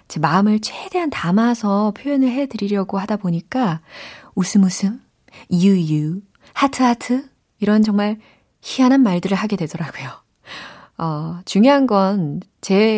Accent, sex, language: native, female, Korean